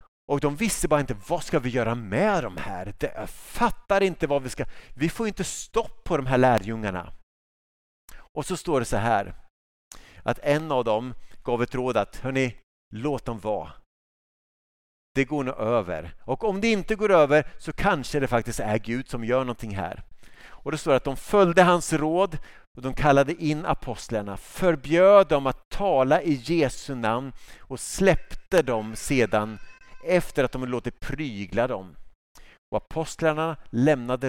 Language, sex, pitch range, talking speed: Swedish, male, 100-150 Hz, 170 wpm